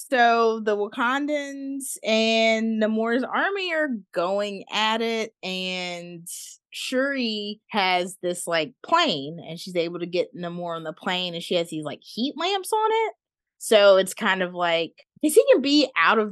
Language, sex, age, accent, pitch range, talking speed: English, female, 20-39, American, 160-230 Hz, 165 wpm